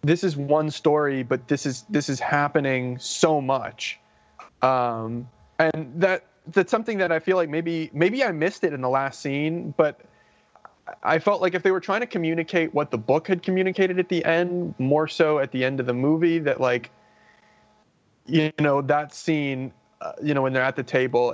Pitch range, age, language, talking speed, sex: 125-155 Hz, 20-39, English, 195 wpm, male